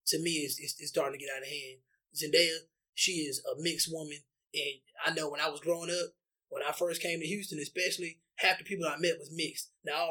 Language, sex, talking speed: English, male, 245 wpm